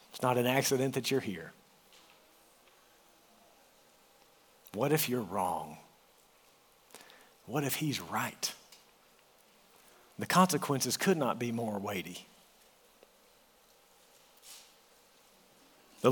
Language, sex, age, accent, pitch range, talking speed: English, male, 50-69, American, 120-145 Hz, 80 wpm